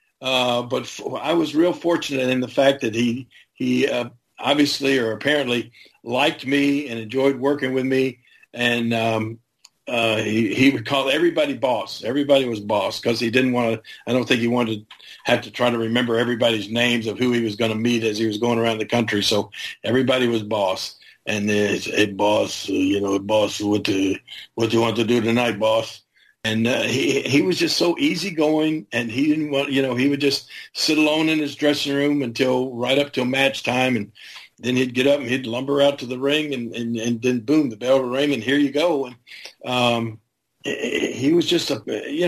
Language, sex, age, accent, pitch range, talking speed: English, male, 50-69, American, 115-140 Hz, 220 wpm